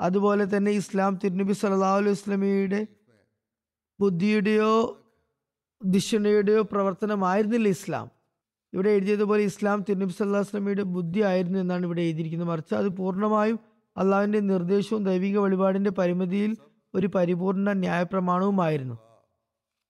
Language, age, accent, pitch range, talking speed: Malayalam, 20-39, native, 185-205 Hz, 95 wpm